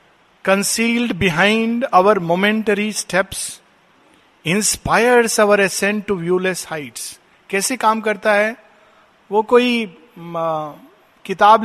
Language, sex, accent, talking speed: Hindi, male, native, 95 wpm